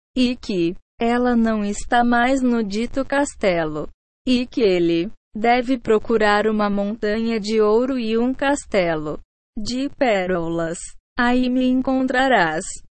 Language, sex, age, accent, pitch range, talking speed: Portuguese, female, 20-39, Brazilian, 205-255 Hz, 120 wpm